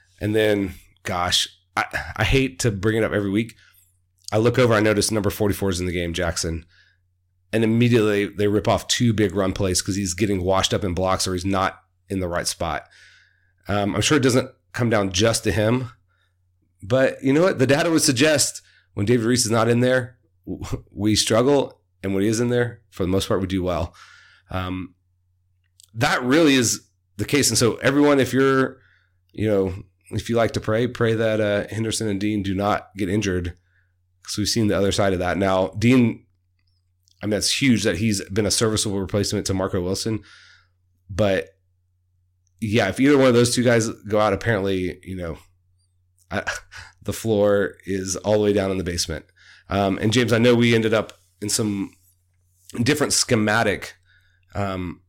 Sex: male